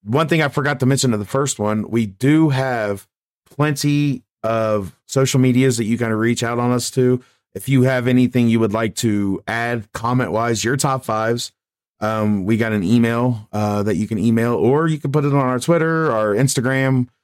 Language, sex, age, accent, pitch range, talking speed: English, male, 30-49, American, 105-135 Hz, 210 wpm